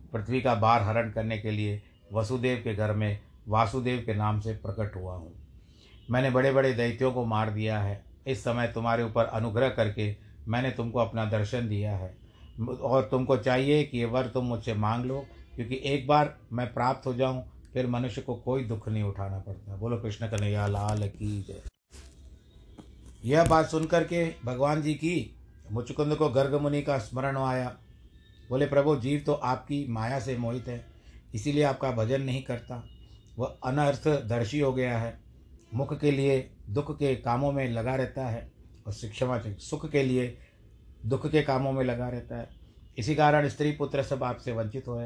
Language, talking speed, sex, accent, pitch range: Hindi, 175 wpm, male, native, 105-135 Hz